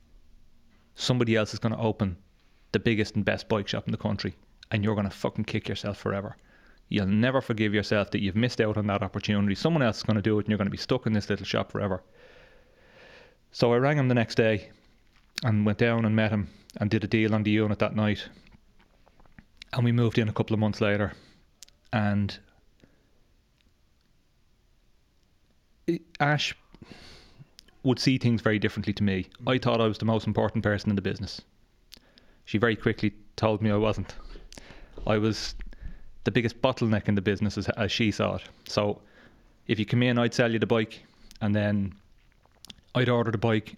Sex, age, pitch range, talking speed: male, 30-49, 105-115 Hz, 190 wpm